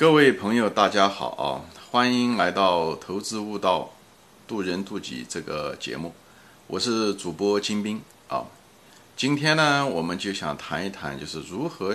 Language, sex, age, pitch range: Chinese, male, 50-69, 85-120 Hz